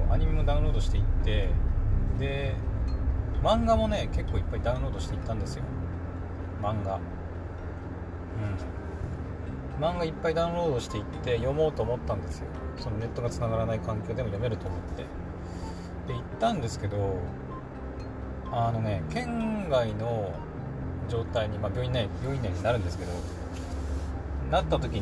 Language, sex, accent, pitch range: Japanese, male, native, 85-100 Hz